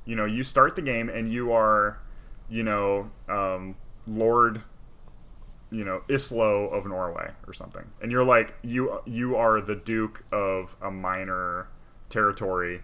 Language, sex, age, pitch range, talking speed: English, male, 20-39, 95-115 Hz, 150 wpm